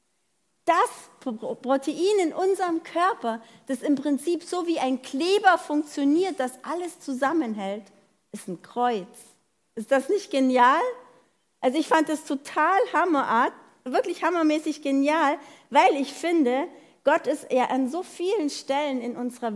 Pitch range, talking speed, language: 225-300 Hz, 135 wpm, German